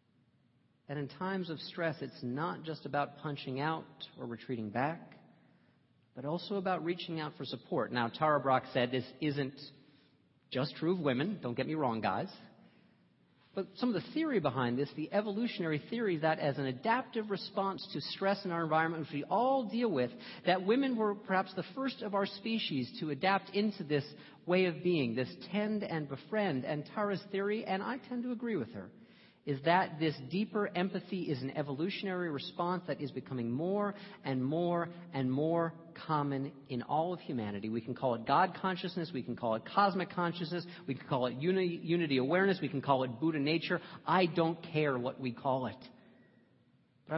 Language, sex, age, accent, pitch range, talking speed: English, male, 40-59, American, 140-190 Hz, 185 wpm